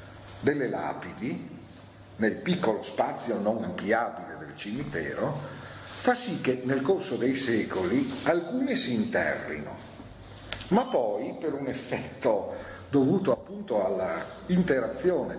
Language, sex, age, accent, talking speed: Italian, male, 50-69, native, 110 wpm